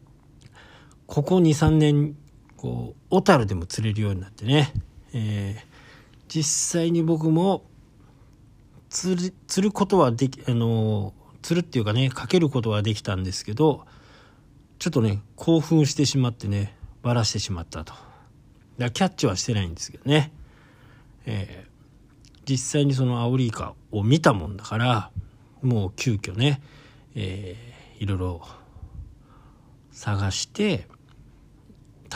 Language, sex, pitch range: Japanese, male, 105-145 Hz